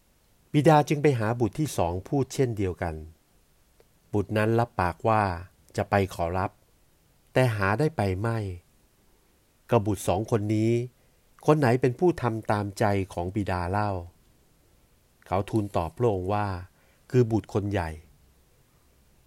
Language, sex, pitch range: Thai, male, 90-120 Hz